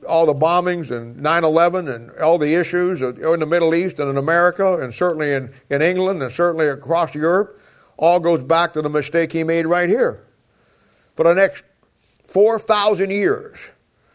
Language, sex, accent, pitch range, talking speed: English, male, American, 140-185 Hz, 175 wpm